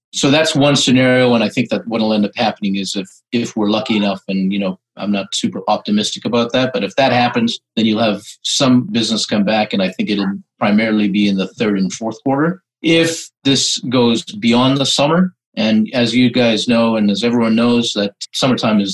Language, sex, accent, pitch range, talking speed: English, male, American, 100-125 Hz, 220 wpm